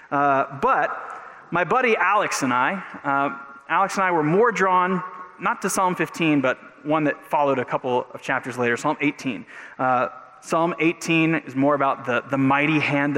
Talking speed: 180 wpm